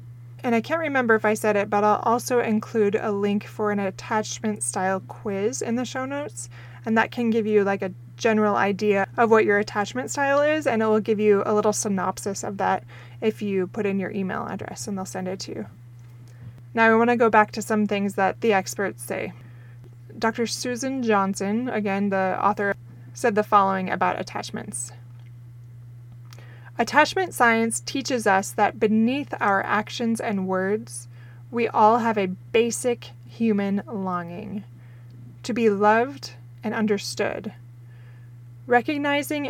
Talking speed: 165 wpm